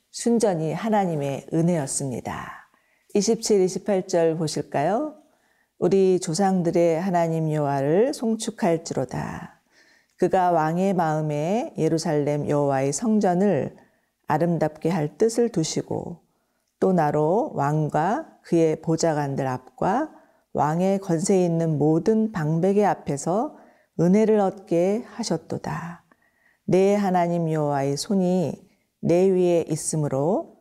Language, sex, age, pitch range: Korean, female, 40-59, 155-210 Hz